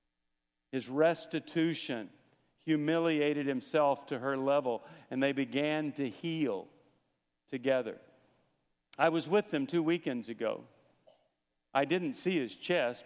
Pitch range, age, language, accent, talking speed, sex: 115-170 Hz, 50-69, English, American, 115 wpm, male